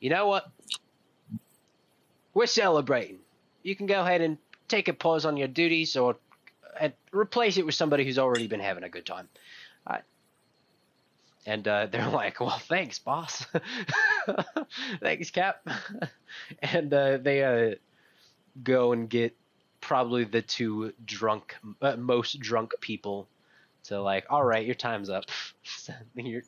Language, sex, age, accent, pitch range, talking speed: English, male, 20-39, American, 110-170 Hz, 145 wpm